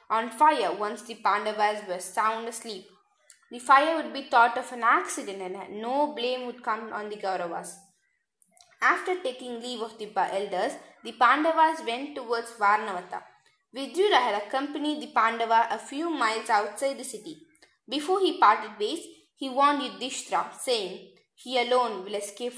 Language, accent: English, Indian